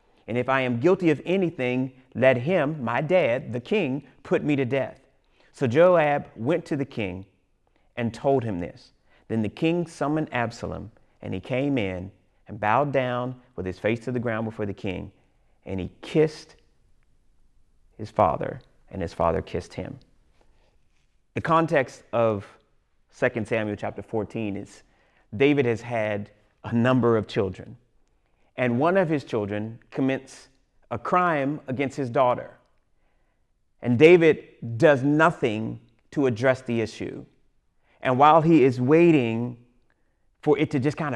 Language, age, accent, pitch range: English, 30-49, American, 110-145 Hz